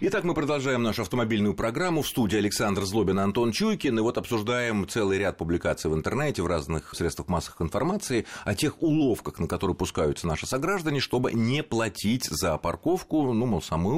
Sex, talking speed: male, 175 wpm